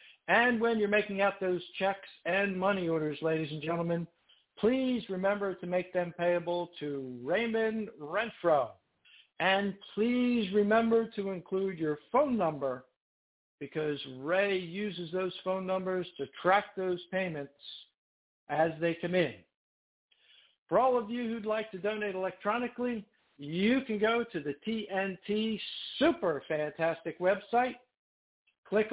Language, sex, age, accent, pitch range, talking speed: English, male, 60-79, American, 170-210 Hz, 130 wpm